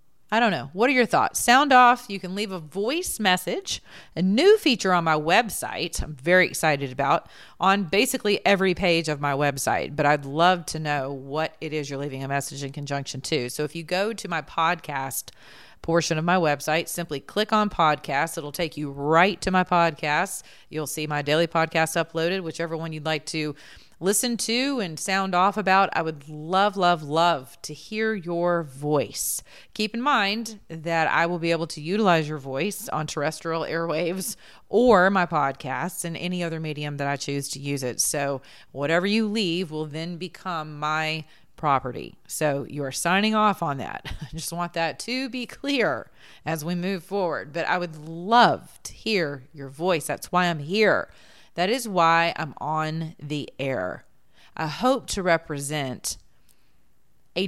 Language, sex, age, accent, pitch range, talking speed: English, female, 40-59, American, 150-195 Hz, 180 wpm